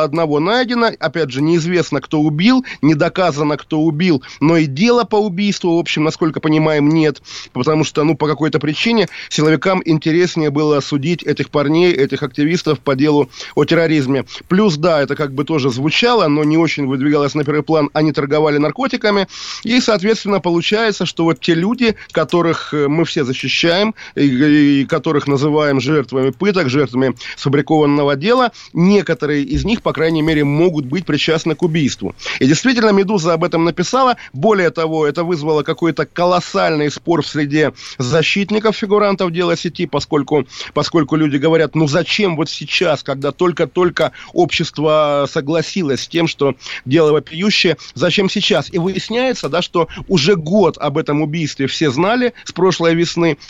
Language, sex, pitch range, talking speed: Russian, male, 150-180 Hz, 155 wpm